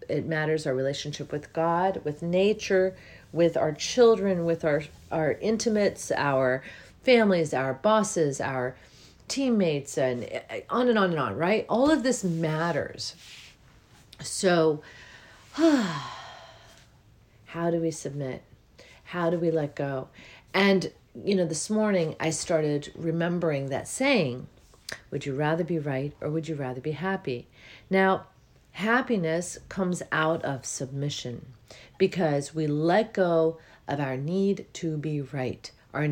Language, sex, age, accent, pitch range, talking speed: English, female, 40-59, American, 140-190 Hz, 135 wpm